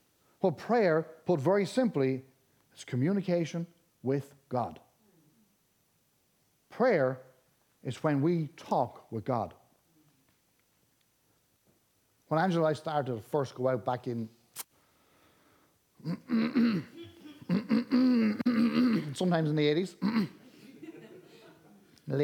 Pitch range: 135-195 Hz